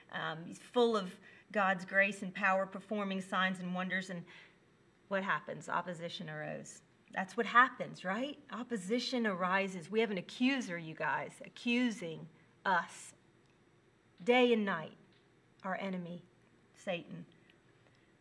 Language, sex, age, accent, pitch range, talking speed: English, female, 40-59, American, 180-220 Hz, 120 wpm